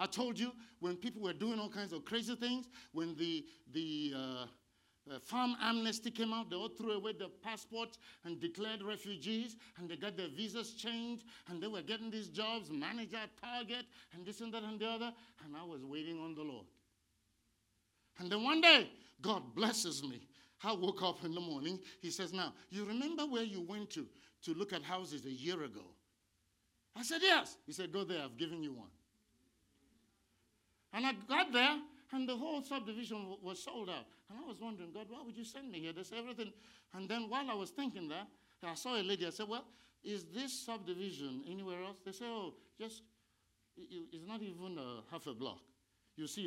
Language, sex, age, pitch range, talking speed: English, male, 50-69, 150-230 Hz, 200 wpm